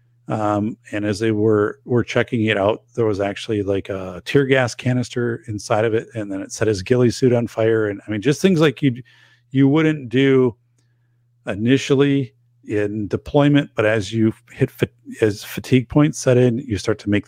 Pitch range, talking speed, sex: 110-130 Hz, 195 wpm, male